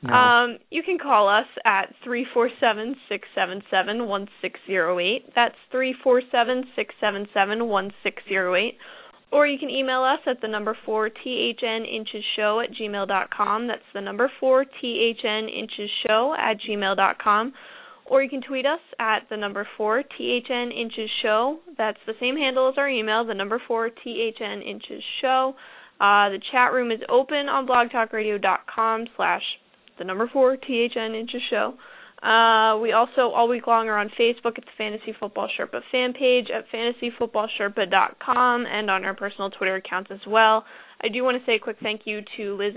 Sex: female